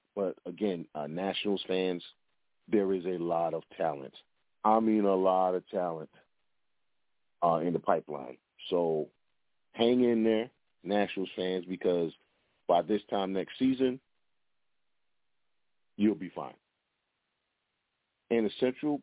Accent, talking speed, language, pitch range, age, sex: American, 125 wpm, English, 90-105 Hz, 40-59, male